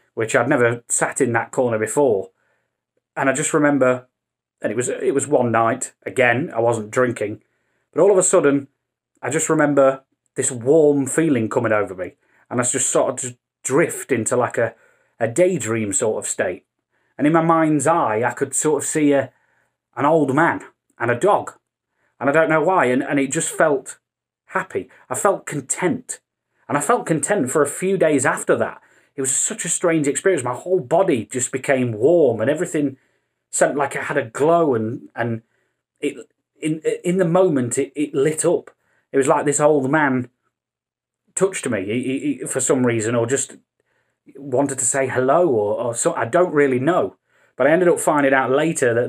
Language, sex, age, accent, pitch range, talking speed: English, male, 30-49, British, 125-150 Hz, 190 wpm